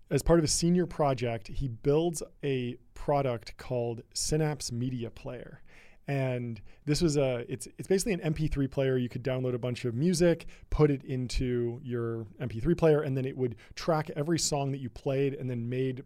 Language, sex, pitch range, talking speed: English, male, 120-145 Hz, 185 wpm